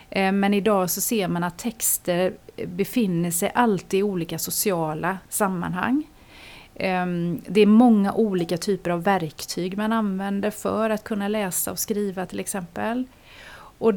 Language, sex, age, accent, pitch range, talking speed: Swedish, female, 30-49, native, 175-220 Hz, 140 wpm